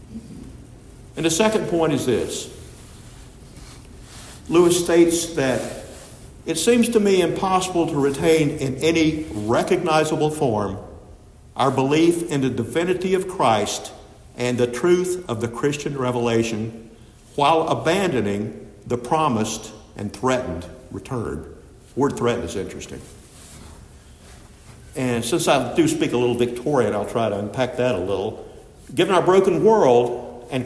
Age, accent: 60-79, American